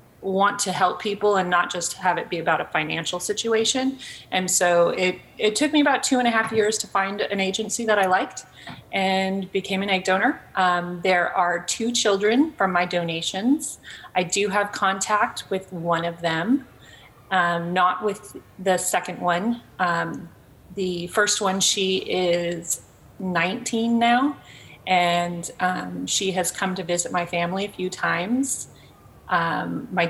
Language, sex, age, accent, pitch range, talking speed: Danish, female, 30-49, American, 175-200 Hz, 165 wpm